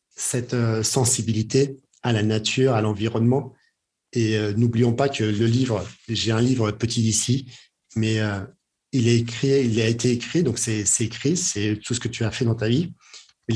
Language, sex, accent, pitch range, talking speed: French, male, French, 110-130 Hz, 180 wpm